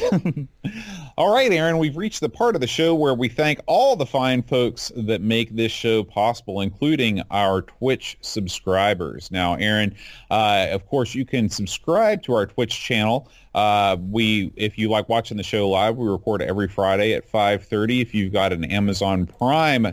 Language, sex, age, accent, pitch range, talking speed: English, male, 30-49, American, 105-145 Hz, 180 wpm